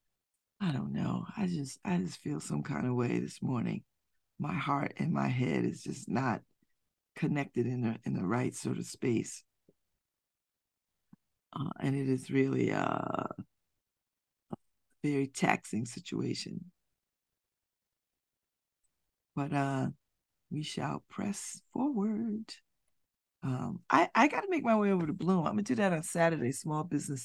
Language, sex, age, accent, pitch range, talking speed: English, female, 50-69, American, 130-185 Hz, 145 wpm